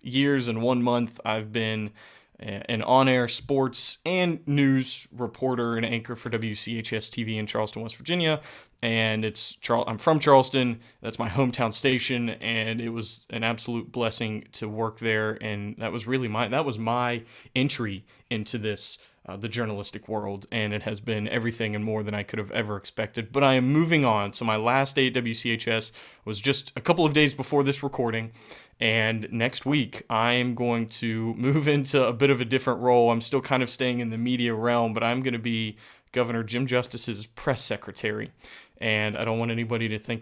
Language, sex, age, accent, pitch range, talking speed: English, male, 20-39, American, 110-130 Hz, 190 wpm